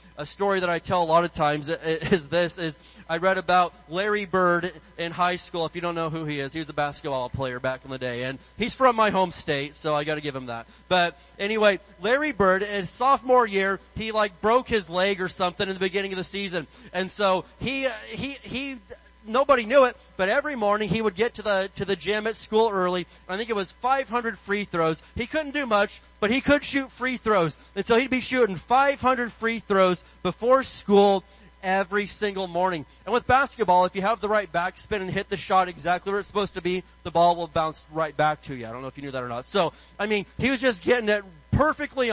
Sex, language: male, English